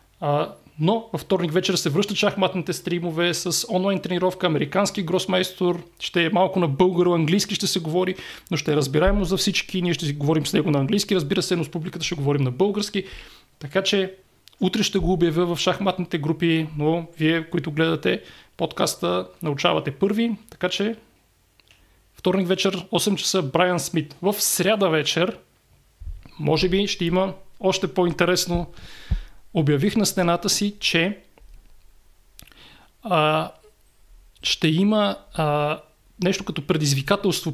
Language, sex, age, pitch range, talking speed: Bulgarian, male, 30-49, 160-190 Hz, 140 wpm